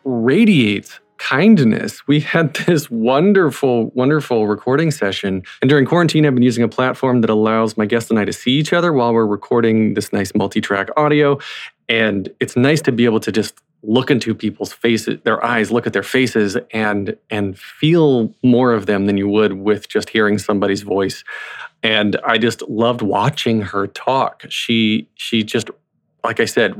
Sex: male